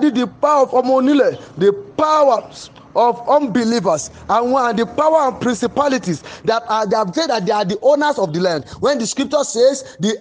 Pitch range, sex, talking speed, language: 215-290 Hz, male, 180 wpm, English